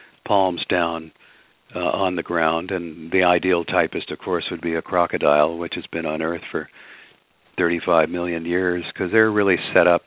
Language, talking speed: English, 180 wpm